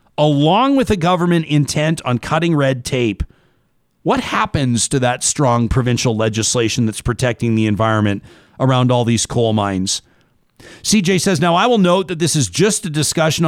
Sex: male